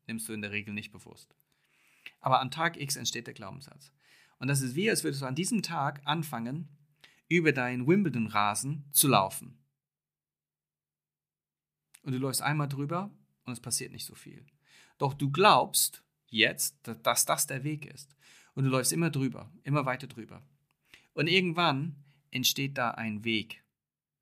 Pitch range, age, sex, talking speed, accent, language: 110-145 Hz, 40-59, male, 160 wpm, German, German